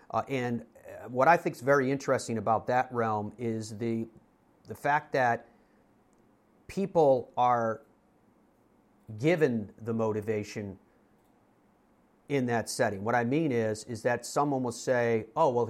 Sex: male